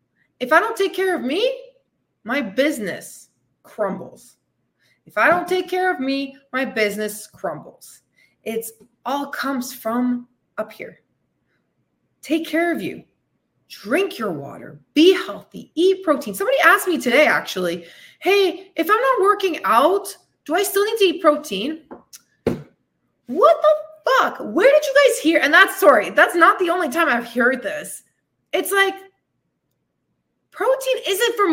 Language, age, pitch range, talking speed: English, 20-39, 250-375 Hz, 150 wpm